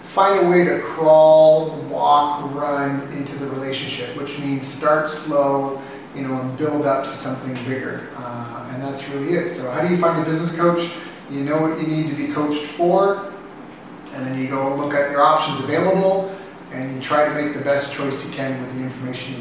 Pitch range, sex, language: 135-155 Hz, male, English